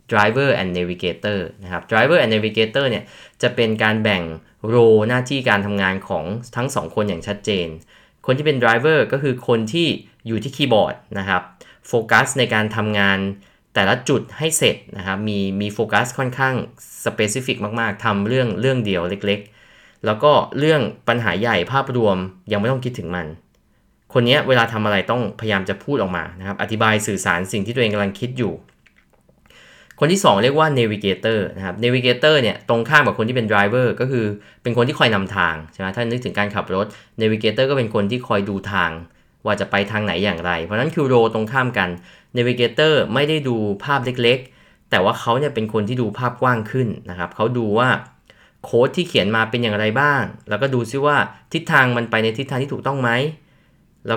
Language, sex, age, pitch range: Thai, male, 20-39, 100-125 Hz